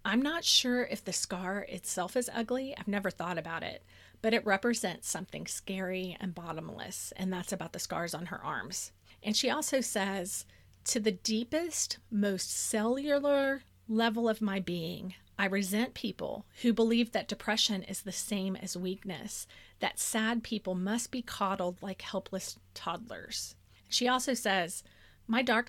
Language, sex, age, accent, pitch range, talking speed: English, female, 30-49, American, 185-230 Hz, 160 wpm